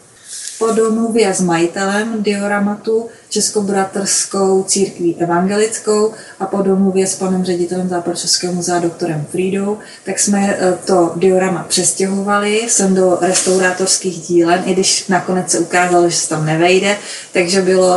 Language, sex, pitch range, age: Czech, female, 175-195 Hz, 20-39